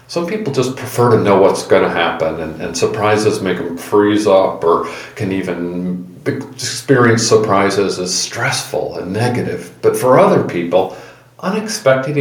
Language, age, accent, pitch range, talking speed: English, 50-69, American, 95-140 Hz, 150 wpm